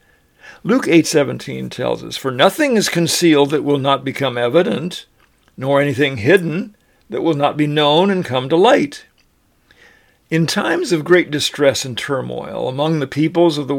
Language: English